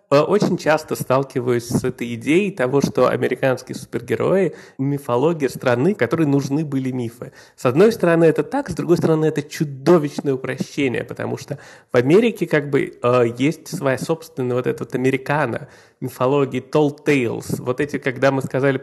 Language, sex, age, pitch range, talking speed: Russian, male, 20-39, 125-150 Hz, 155 wpm